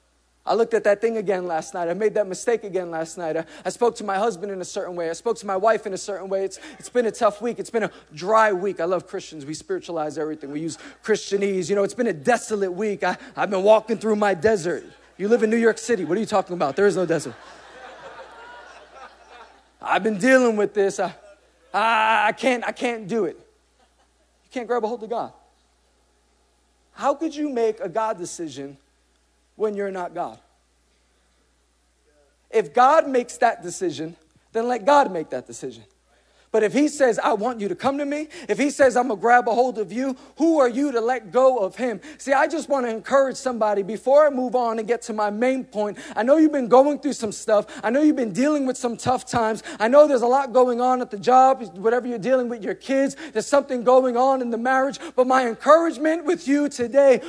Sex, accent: male, American